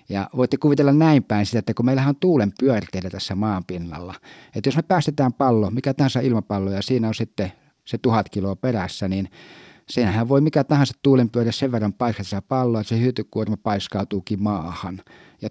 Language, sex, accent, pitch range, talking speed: Finnish, male, native, 105-130 Hz, 180 wpm